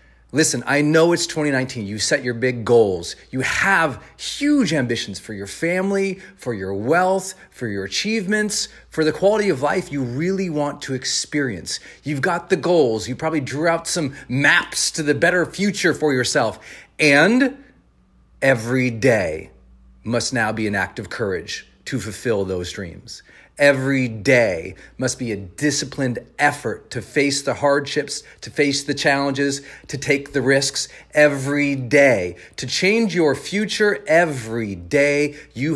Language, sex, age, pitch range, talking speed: English, male, 40-59, 120-155 Hz, 155 wpm